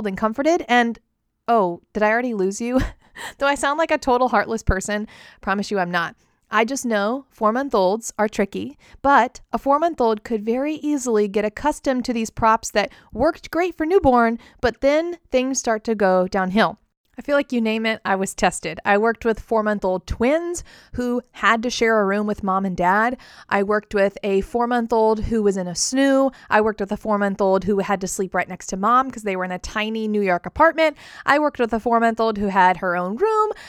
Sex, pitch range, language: female, 200-270 Hz, English